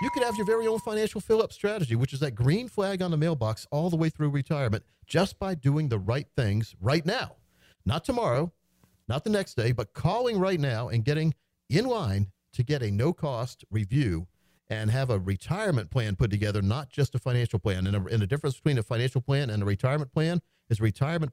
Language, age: English, 50-69